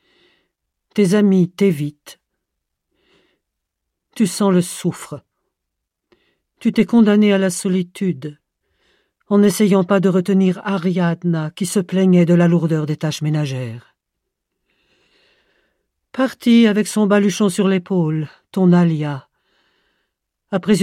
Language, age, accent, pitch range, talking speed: French, 50-69, French, 175-205 Hz, 105 wpm